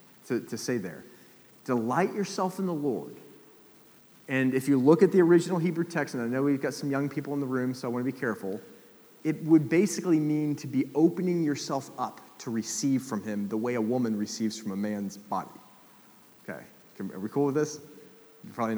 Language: English